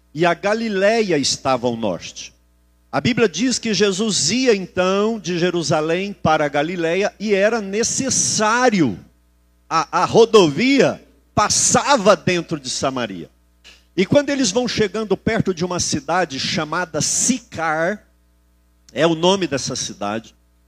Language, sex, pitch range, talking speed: Portuguese, male, 145-220 Hz, 130 wpm